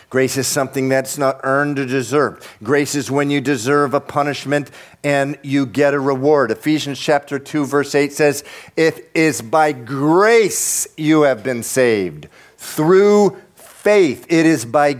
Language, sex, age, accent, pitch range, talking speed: English, male, 50-69, American, 145-205 Hz, 155 wpm